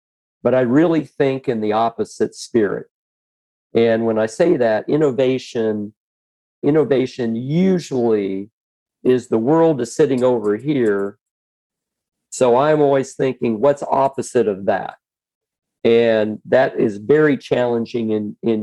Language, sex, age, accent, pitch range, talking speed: English, male, 50-69, American, 110-135 Hz, 120 wpm